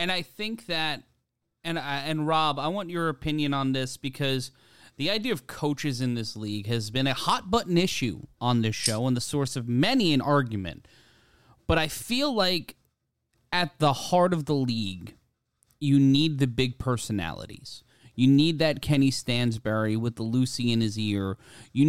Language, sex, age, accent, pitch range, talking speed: English, male, 30-49, American, 120-150 Hz, 180 wpm